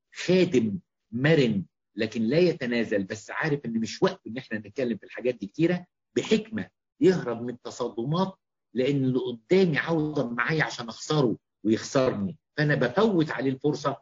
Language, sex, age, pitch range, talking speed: English, male, 50-69, 115-155 Hz, 140 wpm